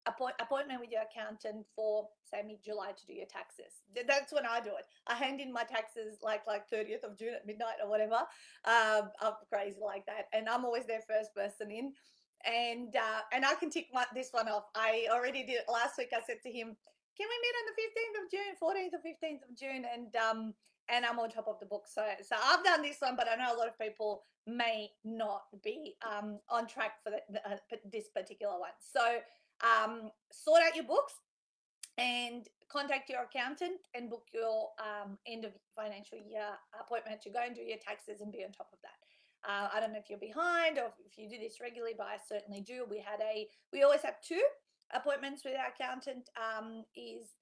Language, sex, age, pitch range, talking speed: English, female, 30-49, 215-270 Hz, 215 wpm